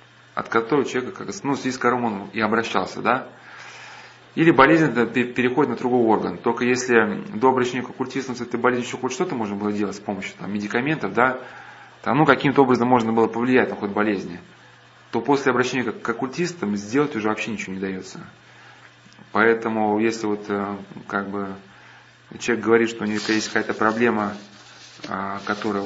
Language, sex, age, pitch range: Russian, male, 20-39, 100-125 Hz